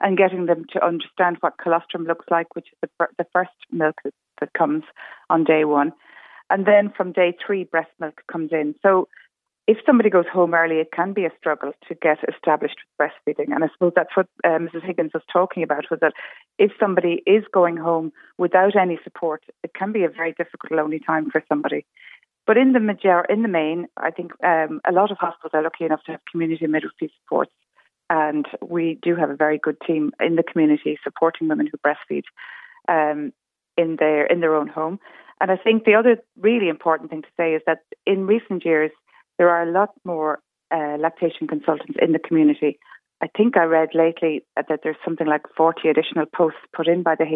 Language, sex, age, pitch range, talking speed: English, female, 40-59, 155-185 Hz, 205 wpm